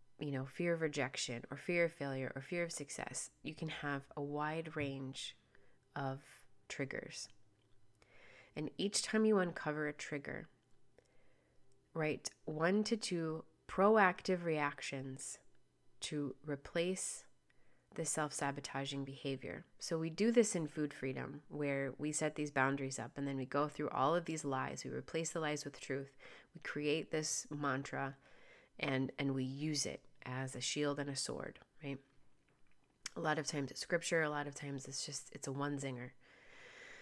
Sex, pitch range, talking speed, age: female, 135-165 Hz, 160 wpm, 30-49